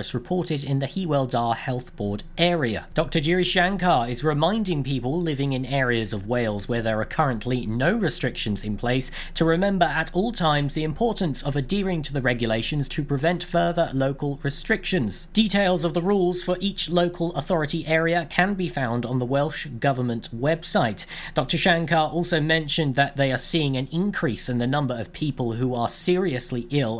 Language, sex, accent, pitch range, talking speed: English, male, British, 125-175 Hz, 175 wpm